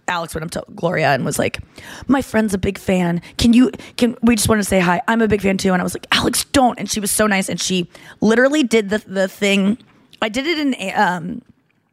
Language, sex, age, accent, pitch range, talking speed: English, female, 20-39, American, 180-220 Hz, 250 wpm